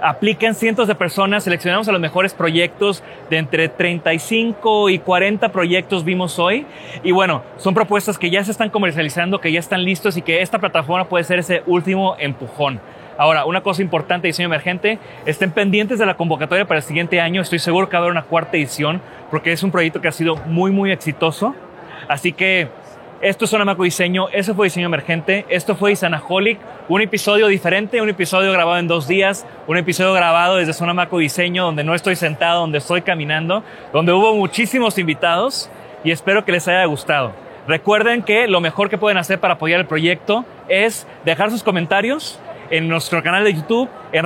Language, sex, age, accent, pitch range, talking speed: Spanish, male, 30-49, Mexican, 170-205 Hz, 190 wpm